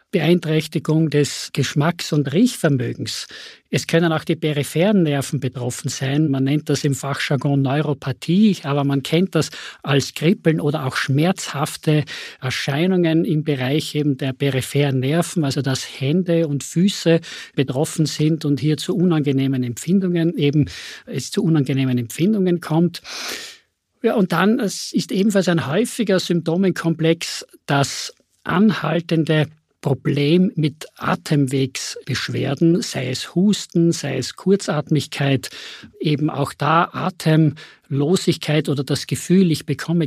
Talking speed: 125 wpm